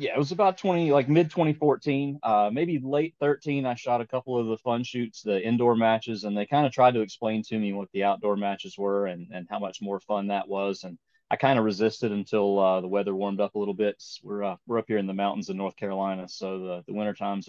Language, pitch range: English, 100-115 Hz